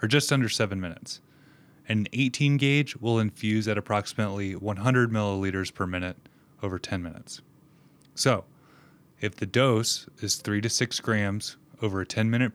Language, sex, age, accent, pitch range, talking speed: English, male, 20-39, American, 105-140 Hz, 155 wpm